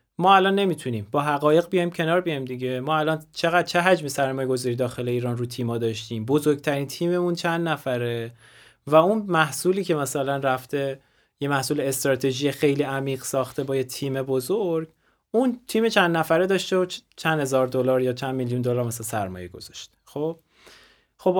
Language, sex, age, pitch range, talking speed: Persian, male, 30-49, 130-175 Hz, 165 wpm